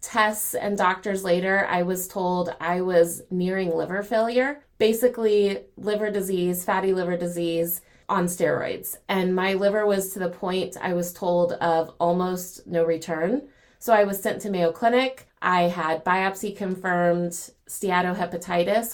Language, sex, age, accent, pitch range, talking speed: English, female, 30-49, American, 175-210 Hz, 145 wpm